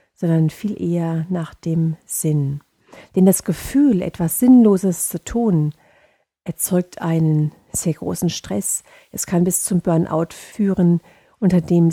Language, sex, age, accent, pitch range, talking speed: German, female, 50-69, German, 155-185 Hz, 130 wpm